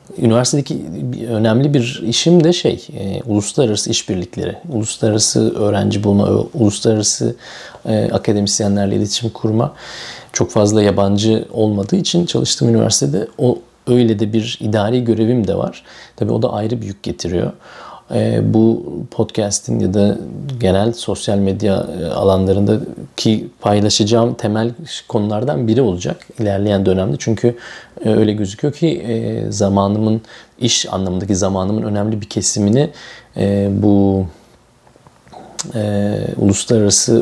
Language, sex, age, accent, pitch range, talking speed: Turkish, male, 40-59, native, 100-120 Hz, 110 wpm